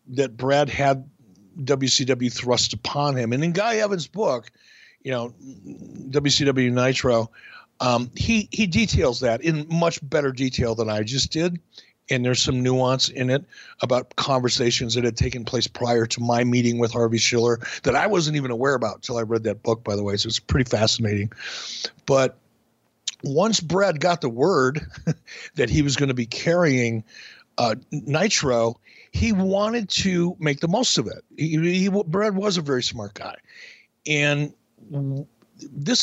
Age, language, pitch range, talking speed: 60-79, English, 120-150 Hz, 165 wpm